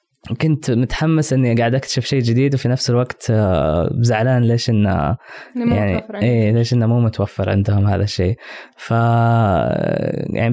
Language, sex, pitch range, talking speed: Arabic, female, 105-125 Hz, 135 wpm